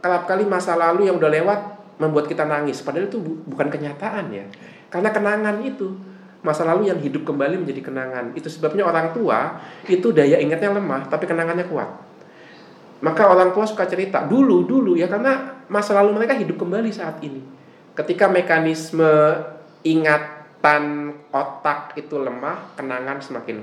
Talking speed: 145 wpm